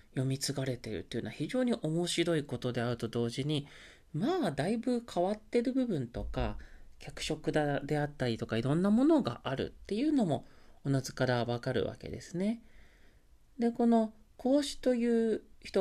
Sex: male